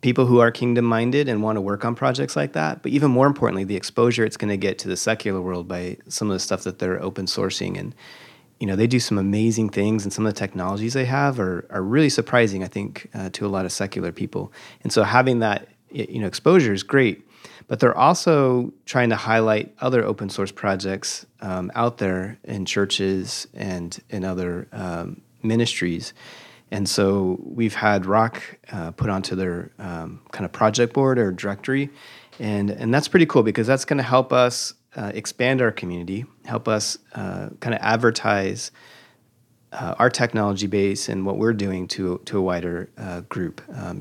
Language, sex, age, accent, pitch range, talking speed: English, male, 30-49, American, 95-125 Hz, 195 wpm